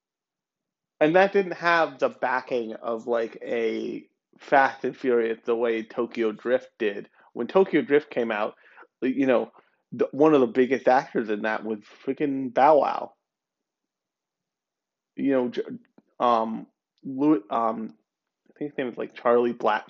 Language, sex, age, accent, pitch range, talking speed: English, male, 30-49, American, 120-155 Hz, 150 wpm